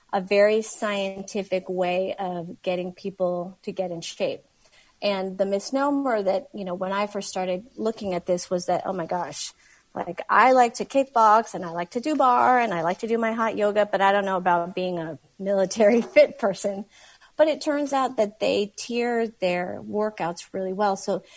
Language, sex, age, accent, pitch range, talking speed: English, female, 40-59, American, 185-215 Hz, 195 wpm